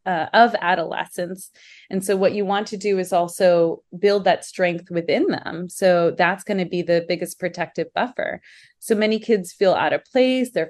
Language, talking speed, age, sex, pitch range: English, 190 wpm, 30-49, female, 170-205 Hz